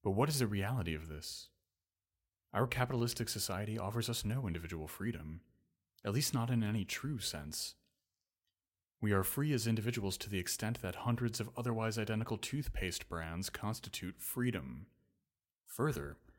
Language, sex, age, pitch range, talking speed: English, male, 30-49, 90-120 Hz, 145 wpm